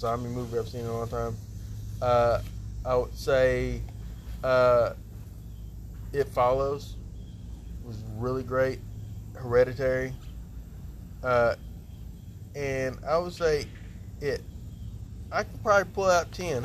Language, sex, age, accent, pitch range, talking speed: English, male, 20-39, American, 100-130 Hz, 115 wpm